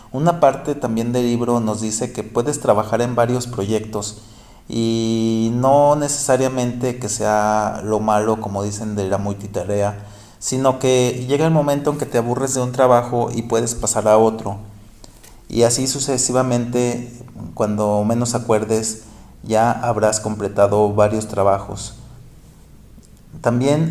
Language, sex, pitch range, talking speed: Spanish, male, 105-125 Hz, 135 wpm